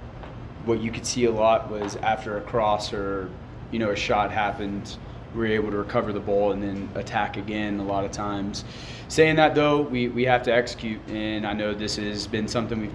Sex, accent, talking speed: male, American, 220 wpm